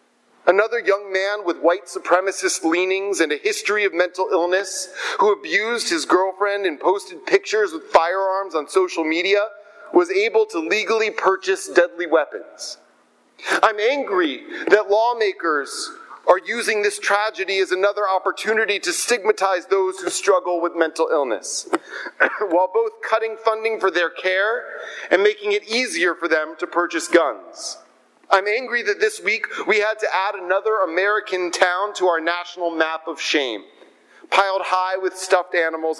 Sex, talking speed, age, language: male, 150 wpm, 40-59, English